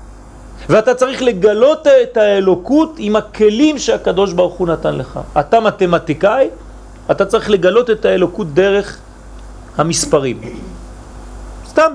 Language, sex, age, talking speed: French, male, 40-59, 110 wpm